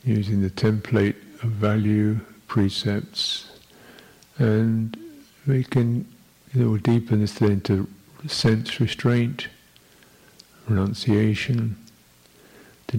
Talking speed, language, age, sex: 85 wpm, English, 50-69, male